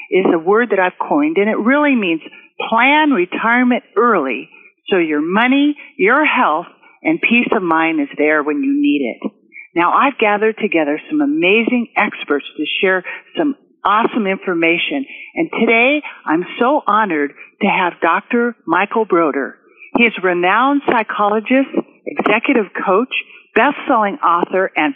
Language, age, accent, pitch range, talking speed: English, 50-69, American, 190-285 Hz, 145 wpm